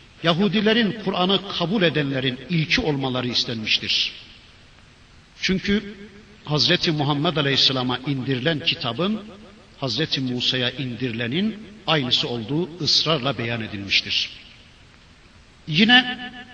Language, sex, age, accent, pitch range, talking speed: Turkish, male, 60-79, native, 130-200 Hz, 80 wpm